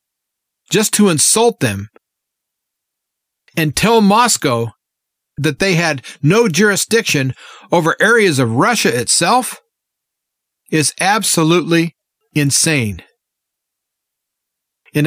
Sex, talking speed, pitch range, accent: male, 85 wpm, 140-190 Hz, American